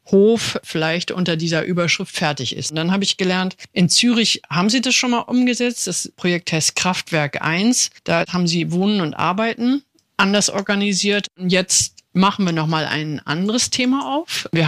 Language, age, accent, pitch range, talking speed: German, 50-69, German, 165-195 Hz, 175 wpm